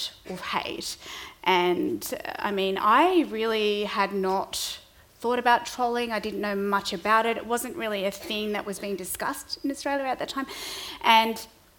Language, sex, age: English, female, 30-49